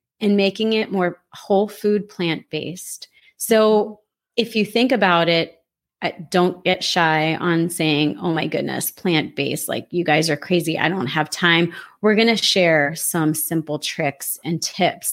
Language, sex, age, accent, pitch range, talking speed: English, female, 30-49, American, 165-205 Hz, 165 wpm